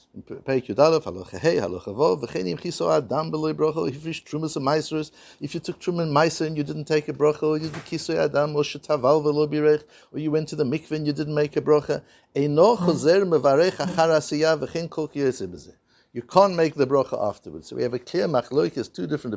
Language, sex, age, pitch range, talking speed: English, male, 60-79, 130-160 Hz, 120 wpm